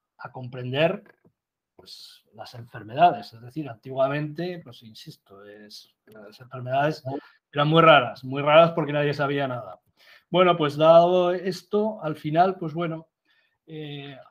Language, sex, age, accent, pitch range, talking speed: Spanish, male, 40-59, Spanish, 130-170 Hz, 135 wpm